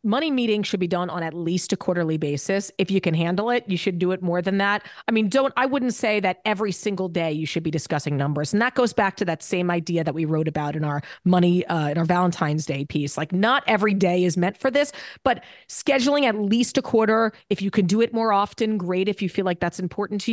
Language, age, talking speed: English, 30-49, 260 wpm